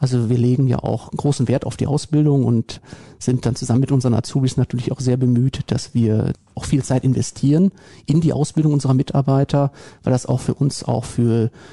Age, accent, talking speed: 40-59, German, 205 wpm